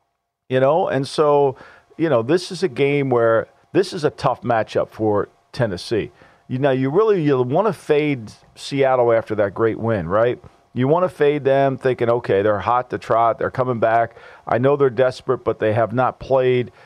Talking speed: 195 wpm